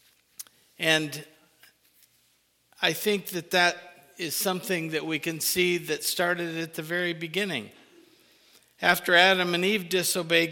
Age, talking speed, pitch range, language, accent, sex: 50-69, 125 wpm, 160-200 Hz, English, American, male